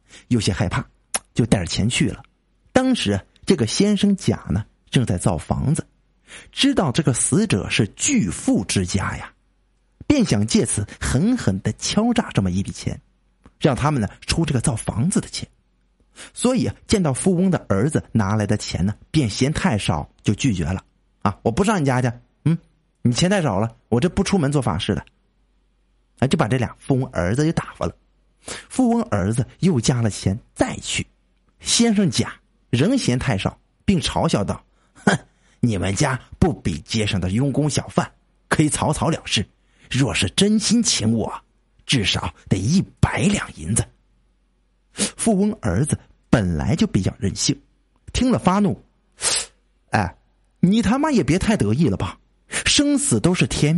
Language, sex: Chinese, male